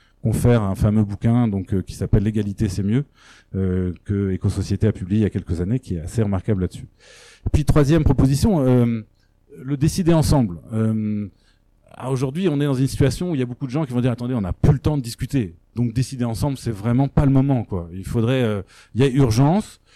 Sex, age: male, 30-49